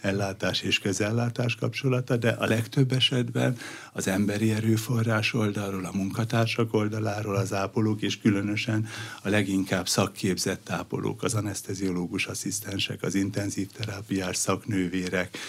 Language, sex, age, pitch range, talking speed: Hungarian, male, 60-79, 95-115 Hz, 115 wpm